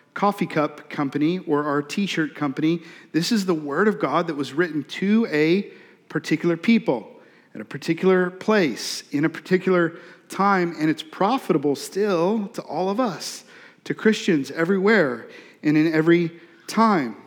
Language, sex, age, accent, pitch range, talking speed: English, male, 40-59, American, 165-200 Hz, 150 wpm